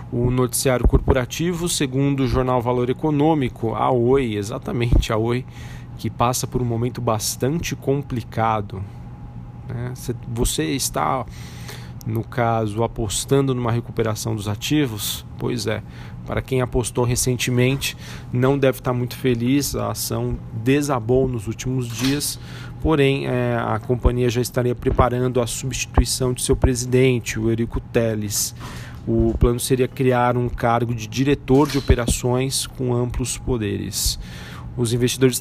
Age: 40-59